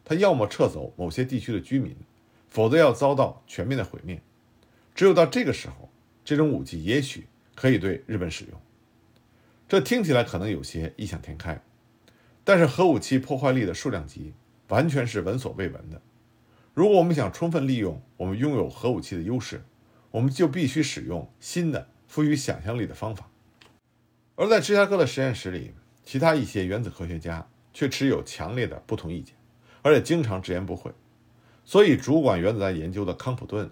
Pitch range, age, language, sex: 105-140 Hz, 50-69, Chinese, male